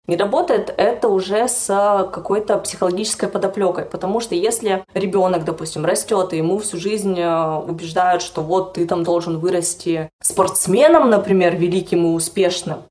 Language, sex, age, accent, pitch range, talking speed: Russian, female, 20-39, native, 175-210 Hz, 140 wpm